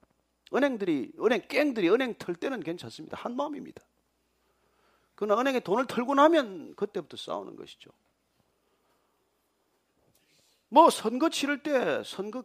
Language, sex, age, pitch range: Korean, male, 40-59, 170-285 Hz